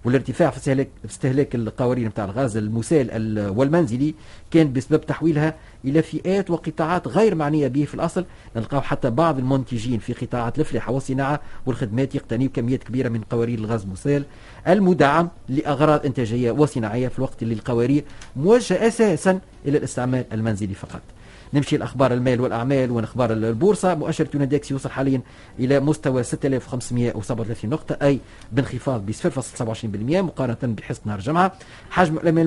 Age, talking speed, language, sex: 40-59, 140 wpm, Arabic, male